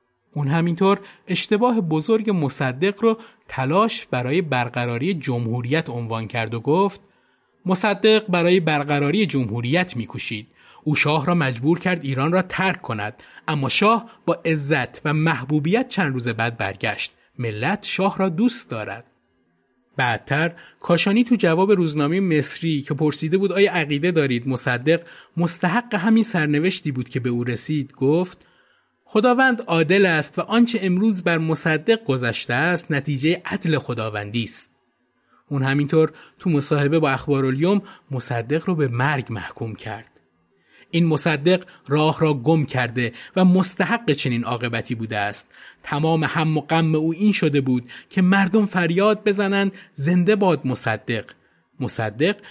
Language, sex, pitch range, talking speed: Persian, male, 125-190 Hz, 135 wpm